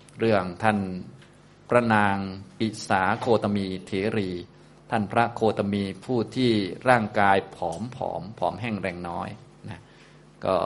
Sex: male